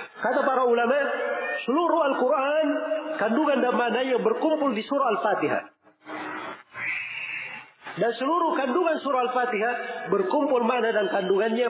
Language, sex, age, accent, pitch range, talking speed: Indonesian, male, 40-59, native, 185-305 Hz, 110 wpm